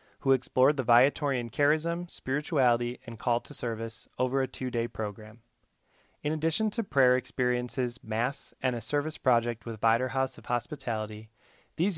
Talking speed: 145 wpm